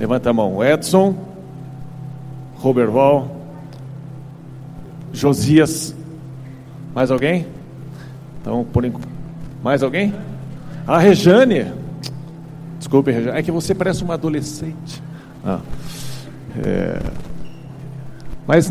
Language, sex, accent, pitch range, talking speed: Portuguese, male, Brazilian, 140-165 Hz, 90 wpm